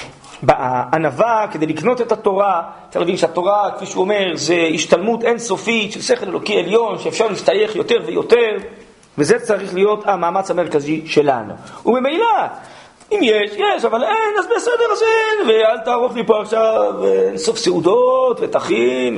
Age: 40-59